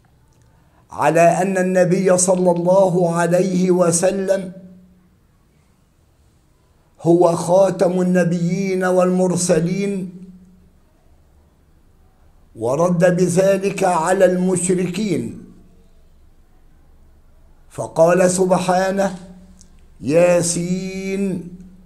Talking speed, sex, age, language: 50 wpm, male, 50-69, Arabic